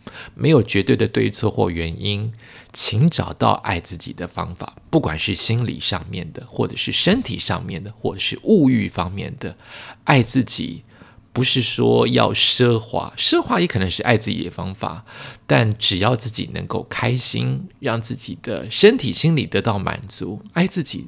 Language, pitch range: Chinese, 95-130 Hz